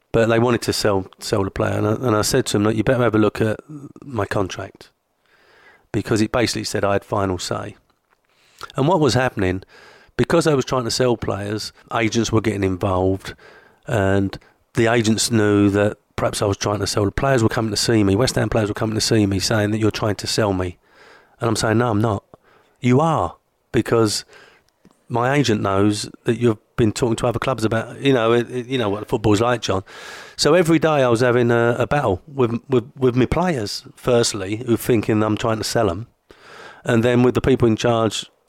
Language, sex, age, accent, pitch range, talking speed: English, male, 40-59, British, 105-125 Hz, 210 wpm